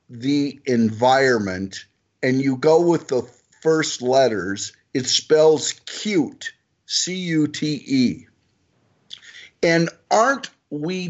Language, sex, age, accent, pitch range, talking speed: English, male, 50-69, American, 130-180 Hz, 85 wpm